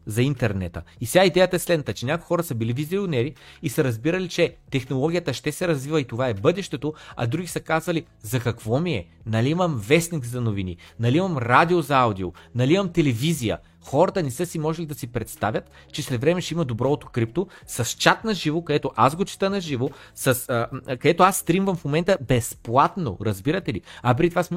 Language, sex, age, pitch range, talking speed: Bulgarian, male, 30-49, 120-170 Hz, 205 wpm